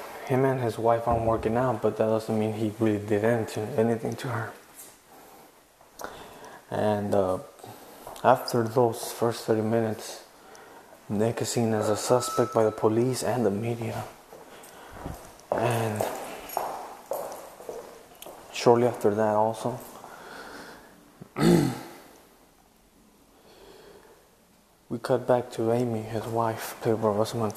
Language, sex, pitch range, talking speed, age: English, male, 110-125 Hz, 110 wpm, 20-39